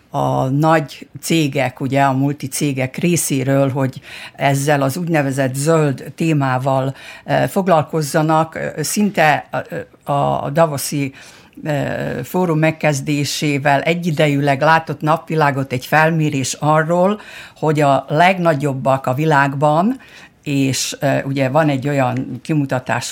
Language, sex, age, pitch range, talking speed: Hungarian, female, 60-79, 135-165 Hz, 95 wpm